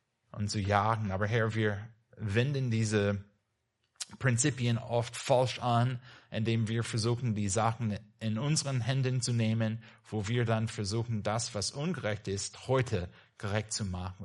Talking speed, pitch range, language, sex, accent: 145 wpm, 110-130 Hz, German, male, German